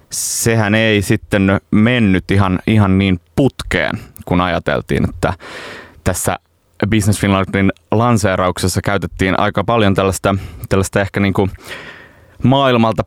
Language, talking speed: Finnish, 110 wpm